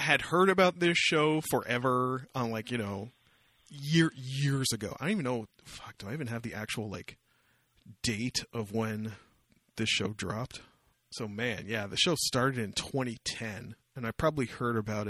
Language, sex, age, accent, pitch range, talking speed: English, male, 30-49, American, 115-140 Hz, 175 wpm